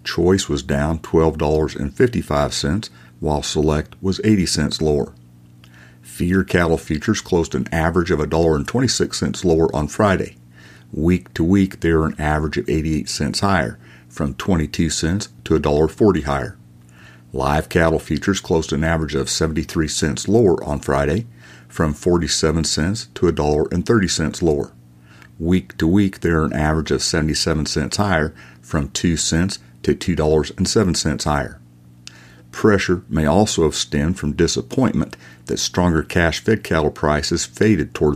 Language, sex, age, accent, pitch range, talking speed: English, male, 50-69, American, 65-85 Hz, 155 wpm